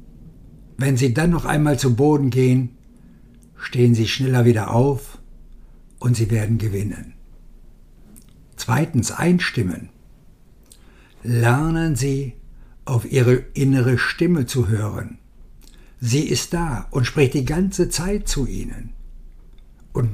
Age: 60-79